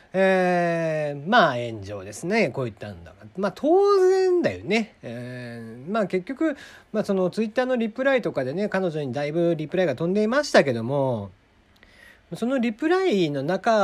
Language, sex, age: Japanese, male, 40-59